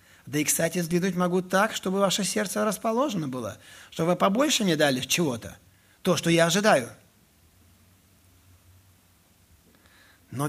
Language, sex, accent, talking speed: Russian, male, native, 125 wpm